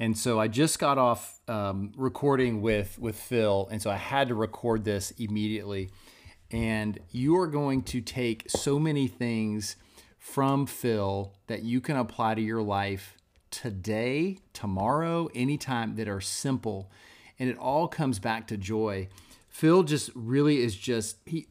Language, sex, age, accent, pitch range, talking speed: English, male, 30-49, American, 105-135 Hz, 155 wpm